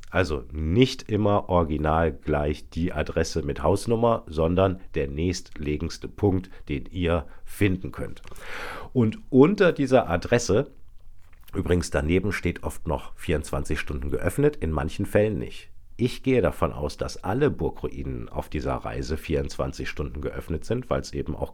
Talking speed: 140 wpm